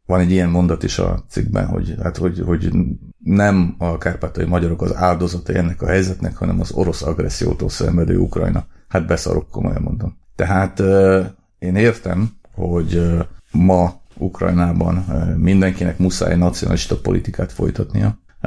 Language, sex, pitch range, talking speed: Hungarian, male, 80-90 Hz, 135 wpm